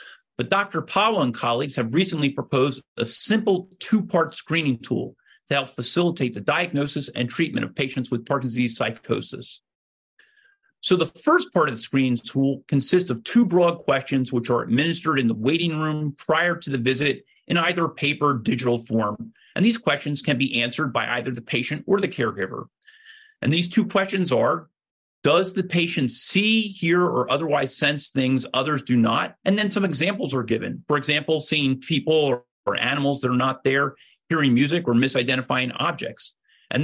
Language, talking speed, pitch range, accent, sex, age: English, 180 wpm, 130-170 Hz, American, male, 40-59